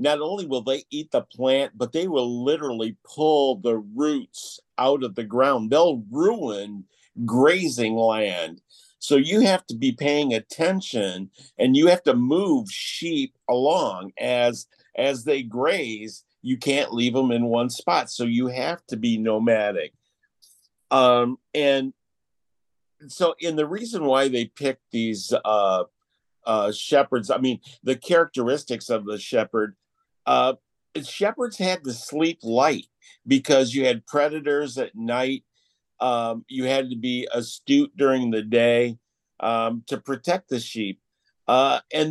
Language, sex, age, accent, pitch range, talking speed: English, male, 50-69, American, 120-165 Hz, 145 wpm